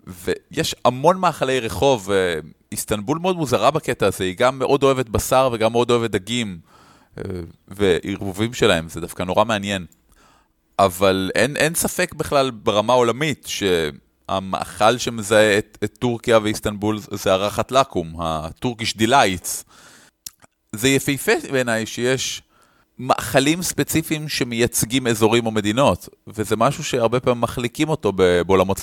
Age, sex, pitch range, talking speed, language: 30-49, male, 105-140 Hz, 125 wpm, Hebrew